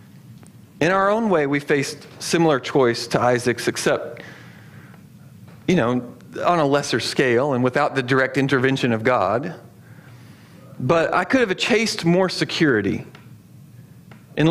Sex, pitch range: male, 145-200 Hz